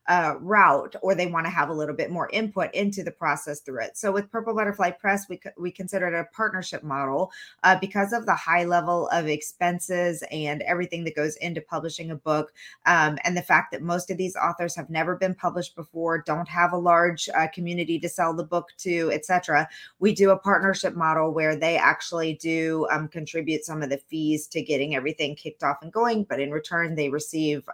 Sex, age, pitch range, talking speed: female, 20-39, 155-185 Hz, 215 wpm